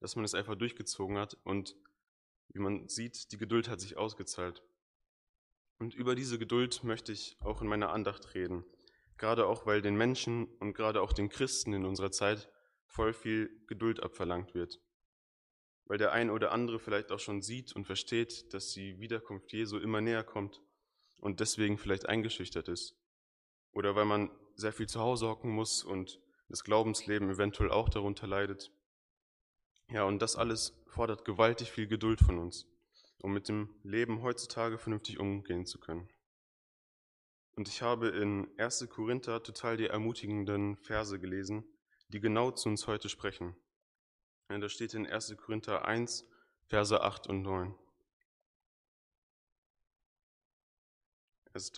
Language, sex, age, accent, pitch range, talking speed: German, male, 20-39, German, 100-115 Hz, 150 wpm